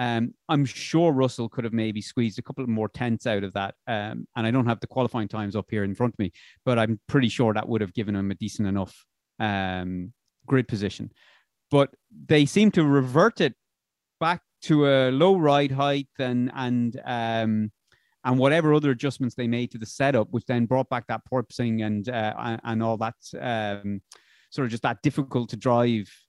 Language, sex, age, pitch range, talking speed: English, male, 30-49, 115-155 Hz, 200 wpm